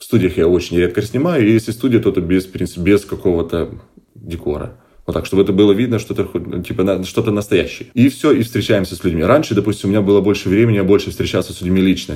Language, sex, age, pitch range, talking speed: Russian, male, 20-39, 90-105 Hz, 230 wpm